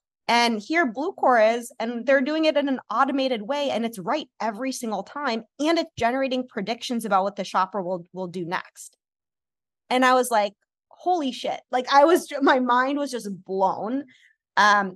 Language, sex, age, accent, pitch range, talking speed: English, female, 20-39, American, 190-250 Hz, 180 wpm